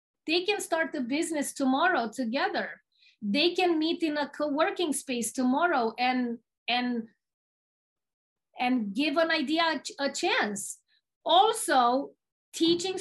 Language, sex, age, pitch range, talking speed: English, female, 40-59, 250-310 Hz, 115 wpm